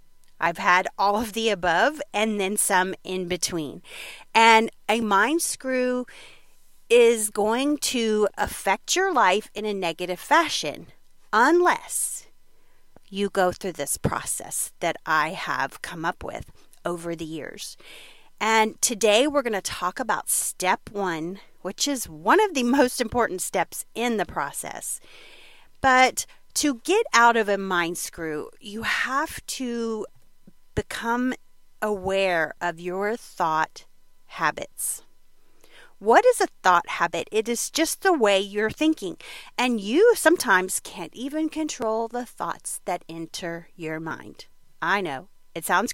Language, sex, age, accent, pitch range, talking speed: English, female, 40-59, American, 185-265 Hz, 135 wpm